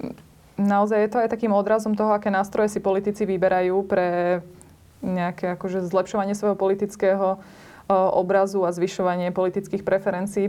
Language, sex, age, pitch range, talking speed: Slovak, female, 20-39, 185-205 Hz, 130 wpm